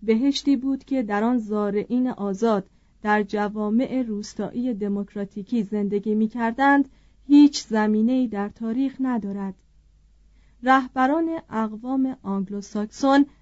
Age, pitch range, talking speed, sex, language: 40-59, 210-260 Hz, 90 wpm, female, Persian